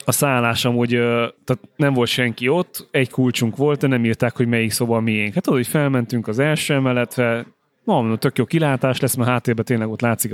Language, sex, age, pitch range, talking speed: Hungarian, male, 30-49, 115-145 Hz, 210 wpm